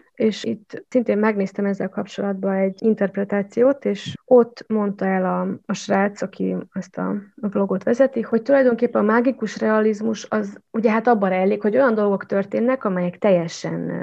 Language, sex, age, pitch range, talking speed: Hungarian, female, 20-39, 185-220 Hz, 160 wpm